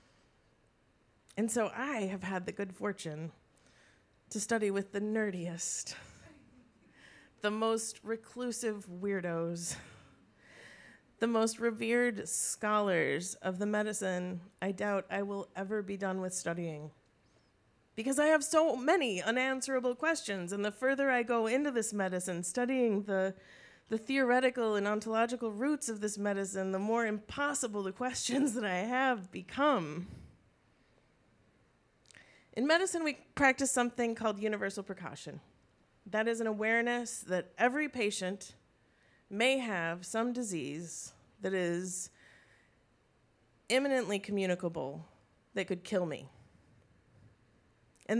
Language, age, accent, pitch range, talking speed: English, 30-49, American, 170-225 Hz, 120 wpm